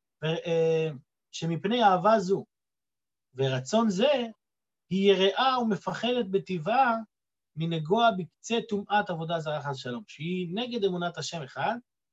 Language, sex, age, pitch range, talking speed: Hebrew, male, 30-49, 160-220 Hz, 115 wpm